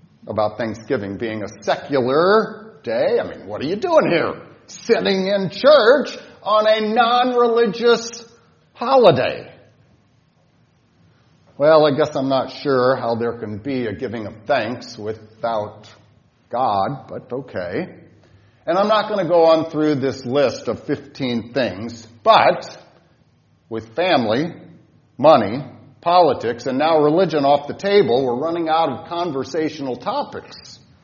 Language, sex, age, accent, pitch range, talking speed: English, male, 40-59, American, 130-215 Hz, 130 wpm